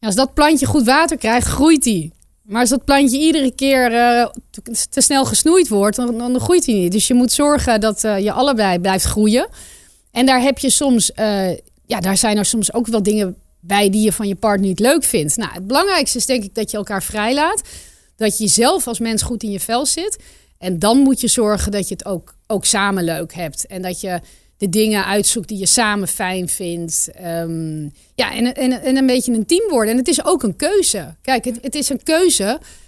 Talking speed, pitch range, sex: 225 wpm, 200-255 Hz, female